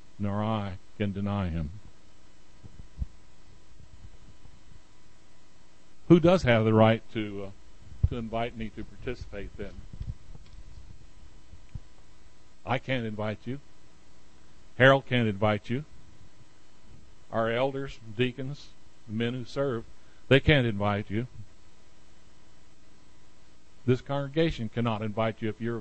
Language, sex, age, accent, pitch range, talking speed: English, male, 60-79, American, 95-120 Hz, 100 wpm